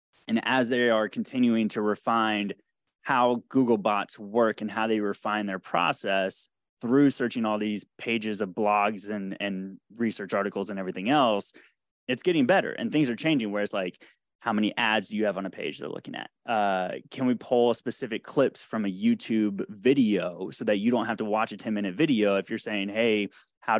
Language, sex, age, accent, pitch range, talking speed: English, male, 20-39, American, 100-120 Hz, 200 wpm